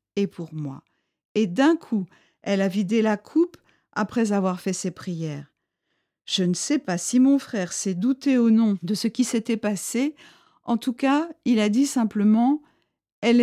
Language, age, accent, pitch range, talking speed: French, 50-69, French, 195-265 Hz, 180 wpm